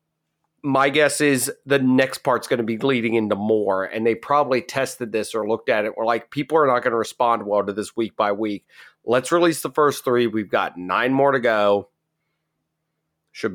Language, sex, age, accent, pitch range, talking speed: English, male, 30-49, American, 105-140 Hz, 200 wpm